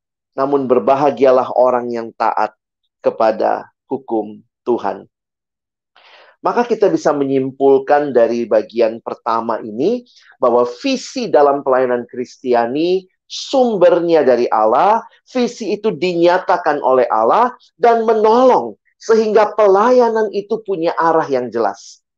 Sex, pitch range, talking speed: male, 125-205 Hz, 105 wpm